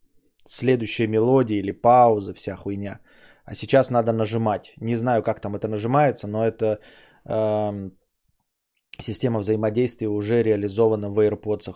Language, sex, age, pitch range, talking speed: Bulgarian, male, 20-39, 100-115 Hz, 130 wpm